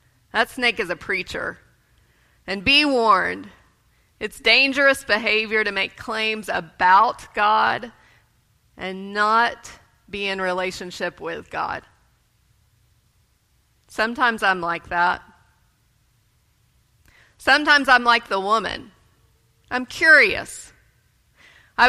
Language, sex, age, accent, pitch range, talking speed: English, female, 30-49, American, 185-230 Hz, 95 wpm